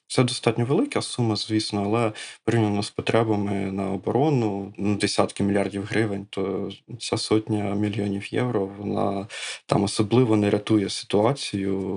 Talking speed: 130 wpm